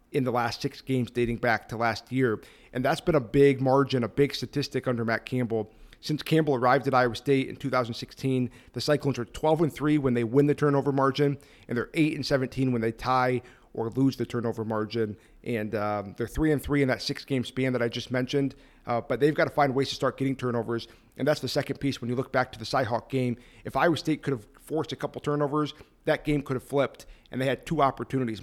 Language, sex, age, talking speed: English, male, 40-59, 240 wpm